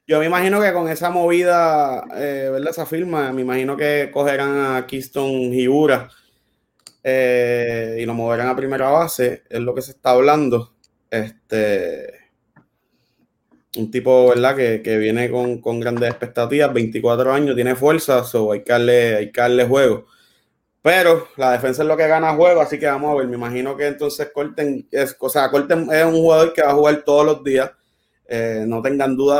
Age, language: 20-39, Spanish